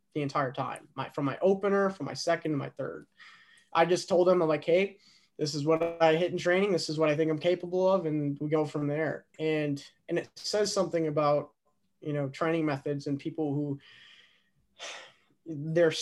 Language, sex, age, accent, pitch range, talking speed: English, male, 20-39, American, 155-200 Hz, 195 wpm